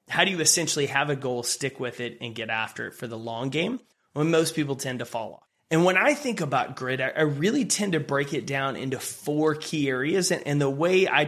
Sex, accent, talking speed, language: male, American, 245 wpm, English